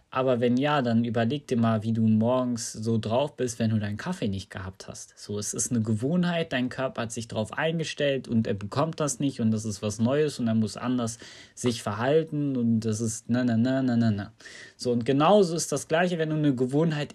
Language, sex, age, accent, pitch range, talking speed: German, male, 20-39, German, 110-135 Hz, 230 wpm